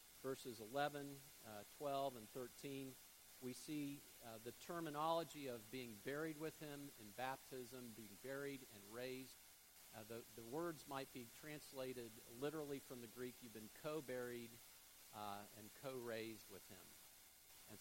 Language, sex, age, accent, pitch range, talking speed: English, male, 50-69, American, 110-145 Hz, 140 wpm